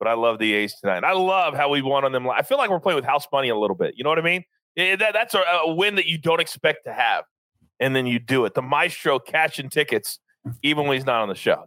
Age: 30-49